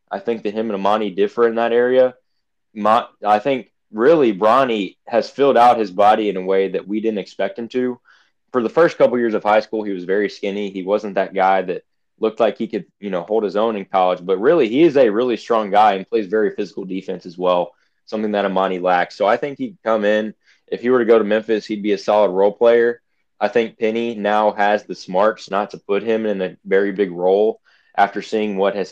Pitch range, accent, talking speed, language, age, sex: 100-115 Hz, American, 240 wpm, English, 20-39, male